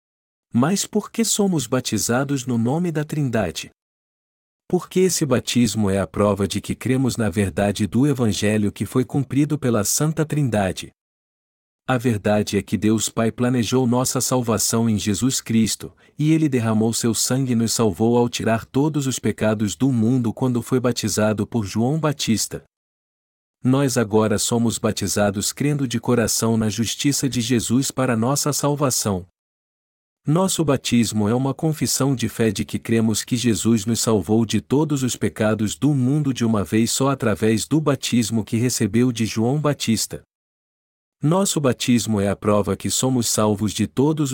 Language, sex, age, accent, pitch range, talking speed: Portuguese, male, 50-69, Brazilian, 110-135 Hz, 160 wpm